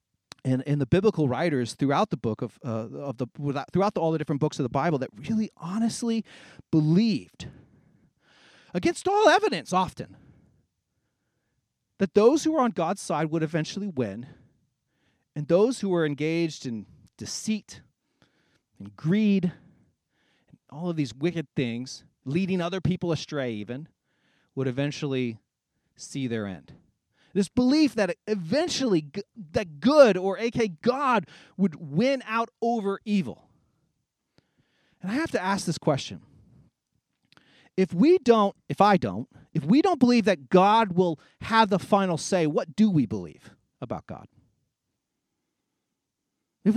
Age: 40-59